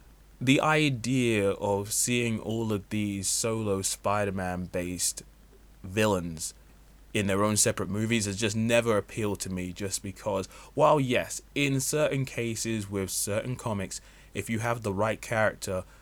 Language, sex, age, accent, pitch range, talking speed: English, male, 20-39, British, 100-130 Hz, 140 wpm